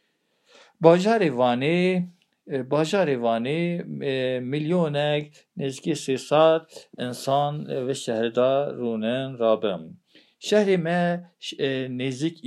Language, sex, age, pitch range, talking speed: Turkish, male, 50-69, 140-175 Hz, 70 wpm